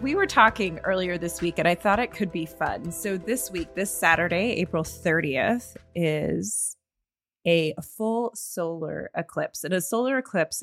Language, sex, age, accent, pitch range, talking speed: English, female, 30-49, American, 160-210 Hz, 165 wpm